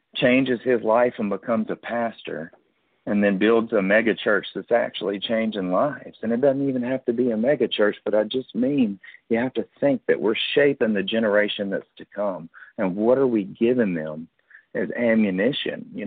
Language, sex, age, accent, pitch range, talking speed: English, male, 50-69, American, 100-125 Hz, 195 wpm